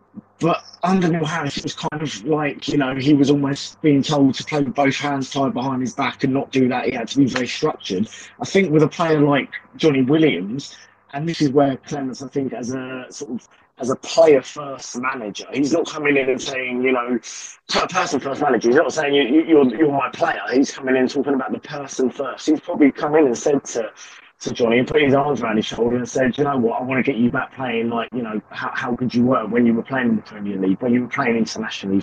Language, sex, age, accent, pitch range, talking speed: English, male, 20-39, British, 125-155 Hz, 250 wpm